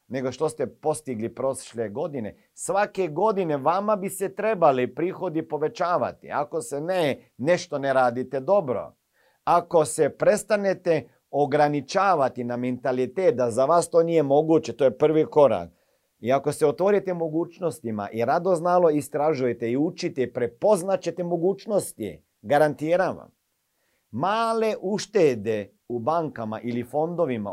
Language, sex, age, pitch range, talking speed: Croatian, male, 50-69, 120-175 Hz, 125 wpm